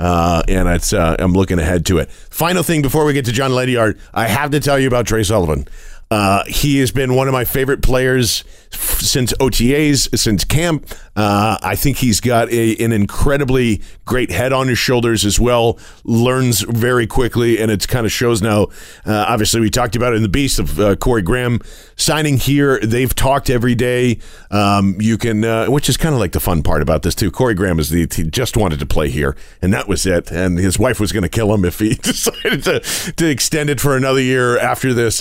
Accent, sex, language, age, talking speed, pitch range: American, male, English, 40-59, 220 wpm, 105-130 Hz